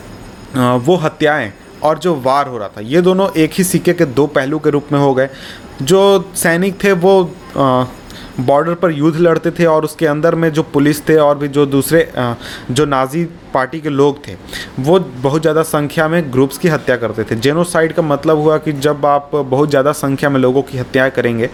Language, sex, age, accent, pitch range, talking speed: English, male, 30-49, Indian, 135-165 Hz, 175 wpm